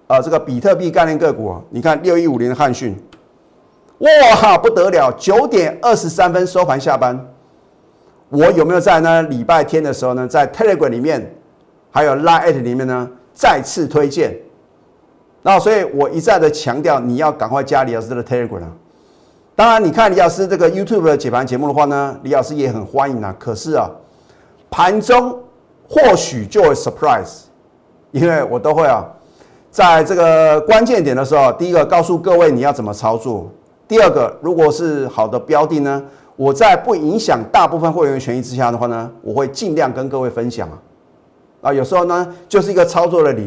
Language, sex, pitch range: Chinese, male, 125-175 Hz